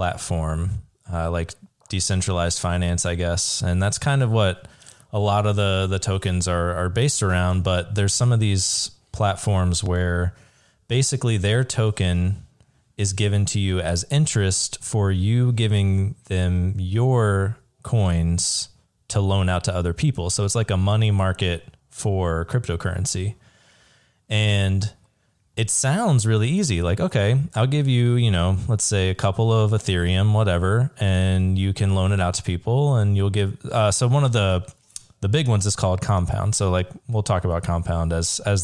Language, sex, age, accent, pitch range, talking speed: English, male, 20-39, American, 95-115 Hz, 165 wpm